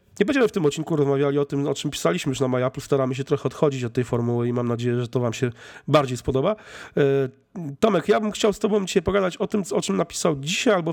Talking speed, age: 255 wpm, 40-59